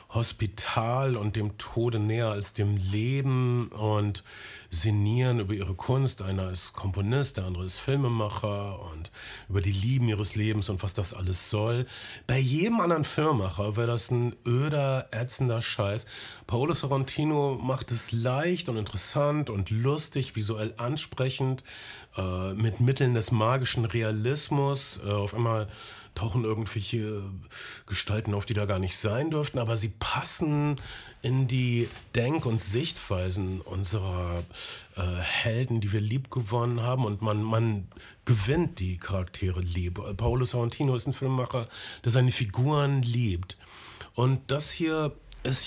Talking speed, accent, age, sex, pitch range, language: 140 wpm, German, 40-59, male, 105-130 Hz, German